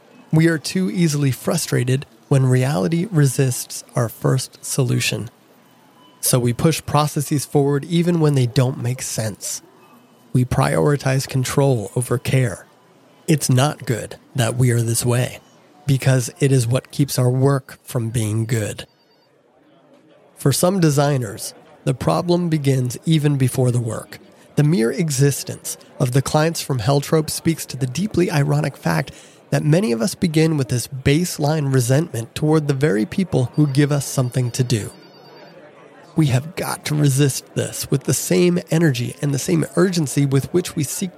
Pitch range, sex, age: 130-160 Hz, male, 30-49